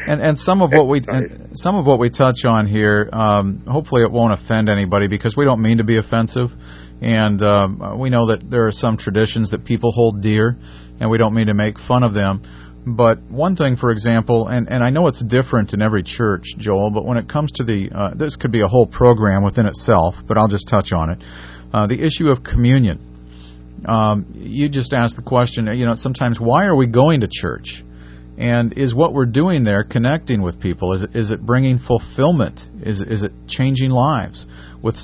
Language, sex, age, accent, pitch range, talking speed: English, male, 40-59, American, 105-130 Hz, 215 wpm